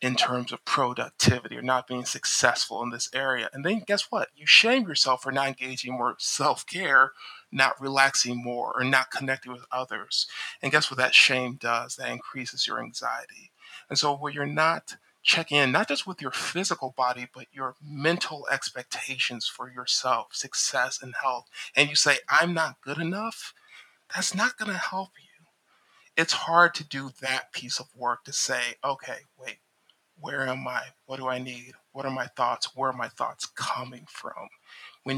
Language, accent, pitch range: English, American, 130-155 Hz